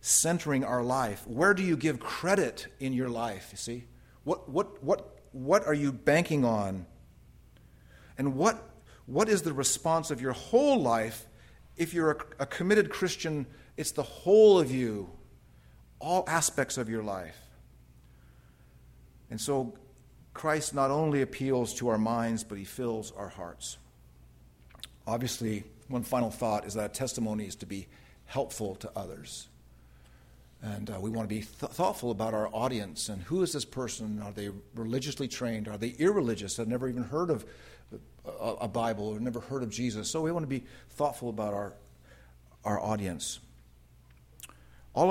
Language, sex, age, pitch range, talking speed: English, male, 40-59, 100-130 Hz, 160 wpm